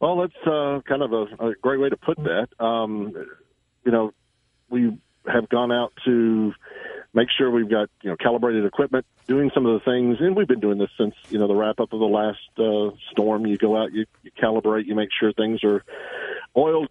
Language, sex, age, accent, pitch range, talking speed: English, male, 40-59, American, 110-125 Hz, 215 wpm